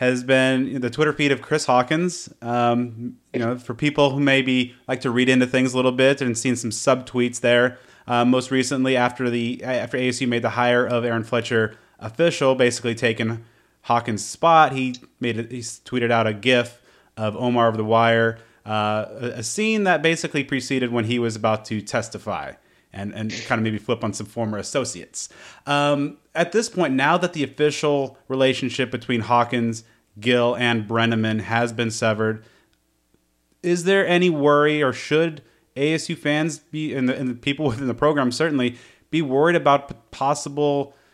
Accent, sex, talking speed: American, male, 180 wpm